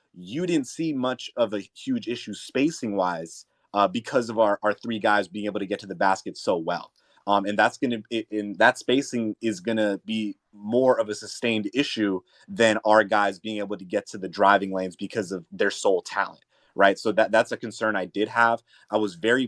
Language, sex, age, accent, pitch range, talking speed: English, male, 30-49, American, 100-115 Hz, 215 wpm